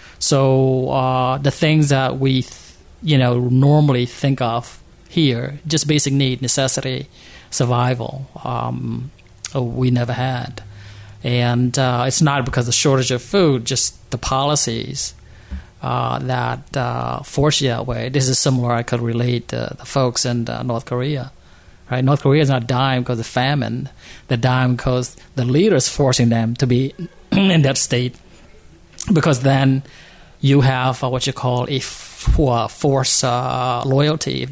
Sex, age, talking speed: male, 30-49, 150 wpm